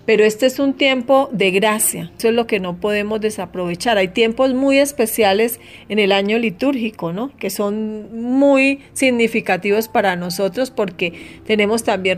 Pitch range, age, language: 195-235 Hz, 40-59, Spanish